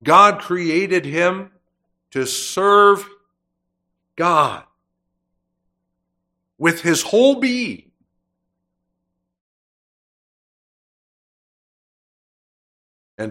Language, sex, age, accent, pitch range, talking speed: English, male, 60-79, American, 90-145 Hz, 50 wpm